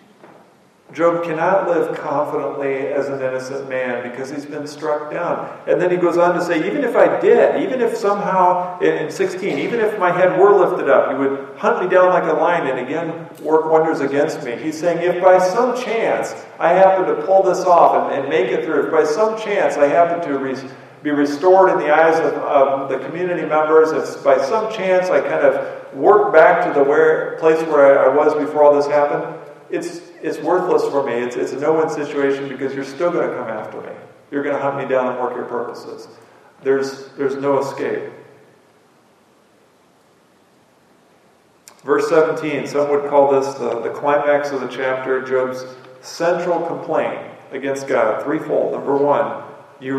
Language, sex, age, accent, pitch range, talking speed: English, male, 40-59, American, 140-175 Hz, 190 wpm